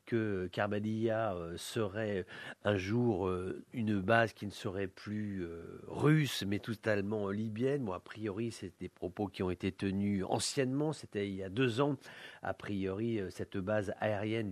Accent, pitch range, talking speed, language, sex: French, 105-135 Hz, 155 wpm, English, male